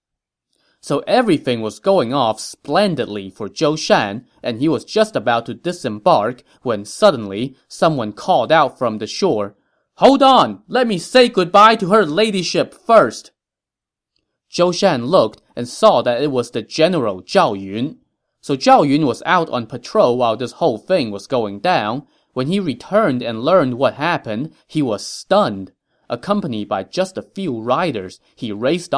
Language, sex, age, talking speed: English, male, 20-39, 160 wpm